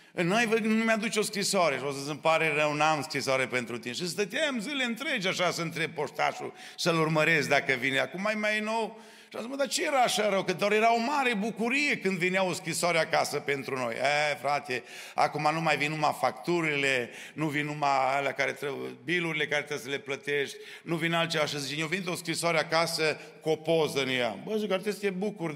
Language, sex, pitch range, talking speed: Romanian, male, 135-170 Hz, 210 wpm